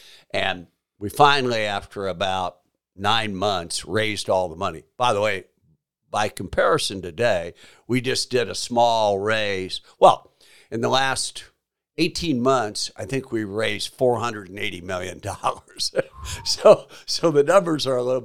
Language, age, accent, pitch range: English, 60-79, American, 100-135 Hz